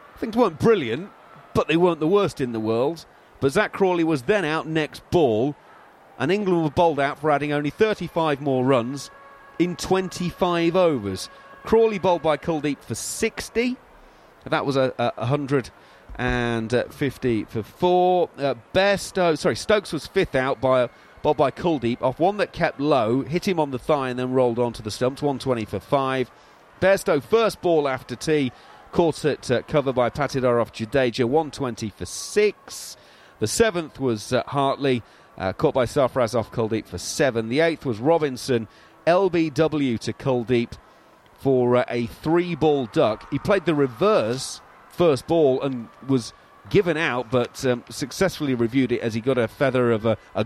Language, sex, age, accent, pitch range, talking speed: English, male, 40-59, British, 120-165 Hz, 165 wpm